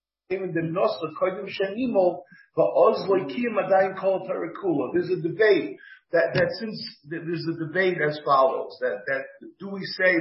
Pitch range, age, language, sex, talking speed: 160-195 Hz, 50-69, English, male, 100 wpm